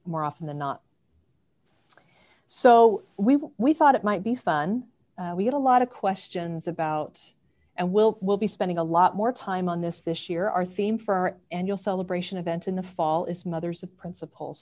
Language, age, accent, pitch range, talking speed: English, 40-59, American, 160-200 Hz, 195 wpm